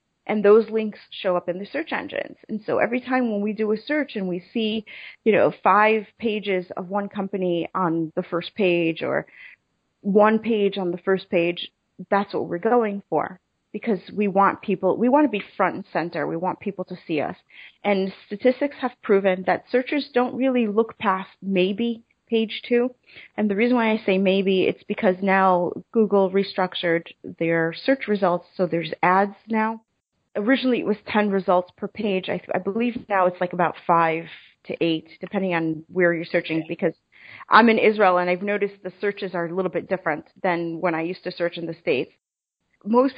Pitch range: 180-220 Hz